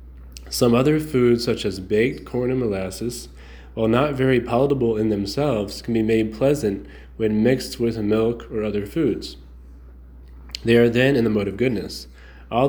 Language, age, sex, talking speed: English, 20-39, male, 165 wpm